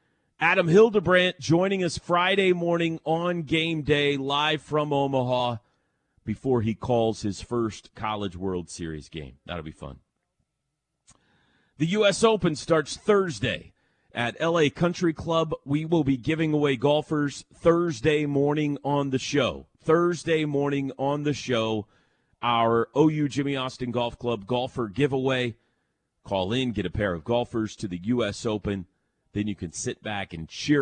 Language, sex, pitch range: English, male, 110-165 Hz